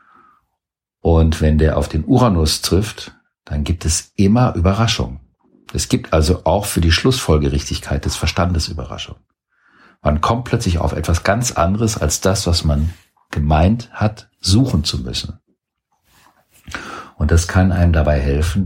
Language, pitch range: German, 75-90 Hz